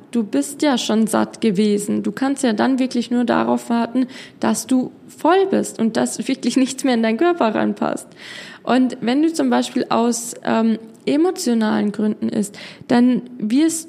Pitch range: 215-260 Hz